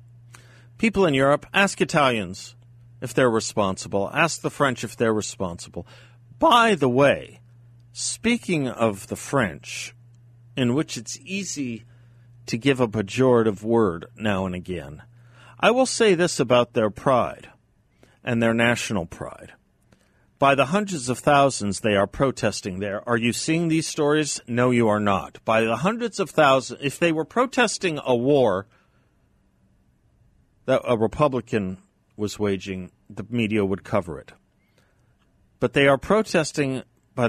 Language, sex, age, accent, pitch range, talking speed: English, male, 50-69, American, 105-135 Hz, 140 wpm